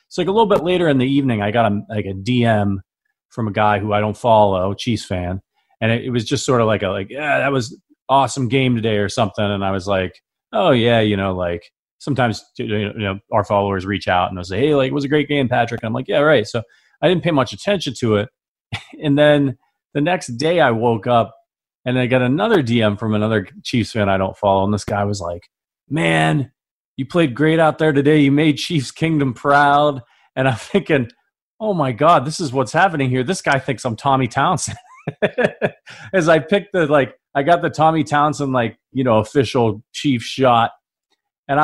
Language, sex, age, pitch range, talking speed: English, male, 30-49, 105-140 Hz, 225 wpm